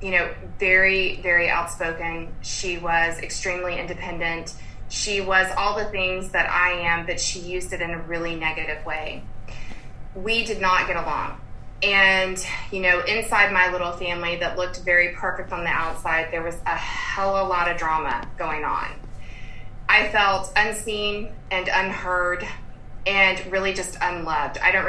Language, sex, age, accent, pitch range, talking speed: English, female, 20-39, American, 165-190 Hz, 160 wpm